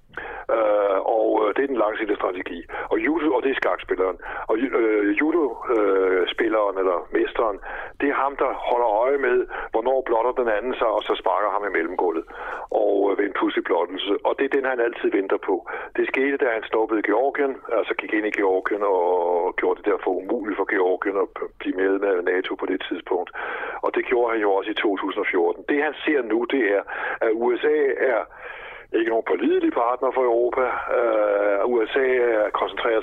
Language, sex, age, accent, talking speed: Danish, male, 60-79, native, 185 wpm